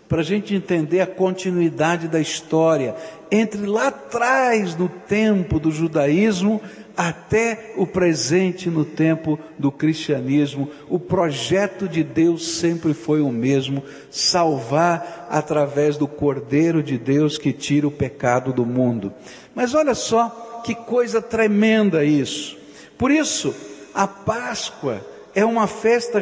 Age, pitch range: 60-79, 160-210 Hz